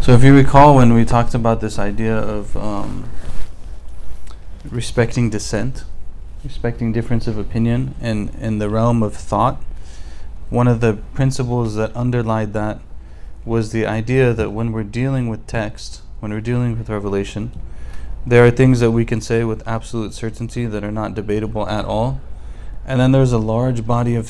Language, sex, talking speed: English, male, 170 wpm